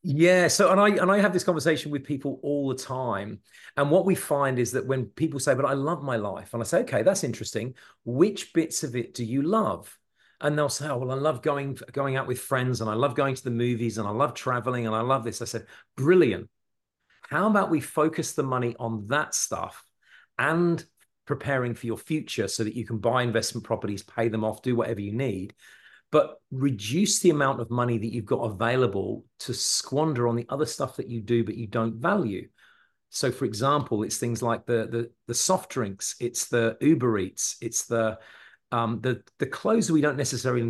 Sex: male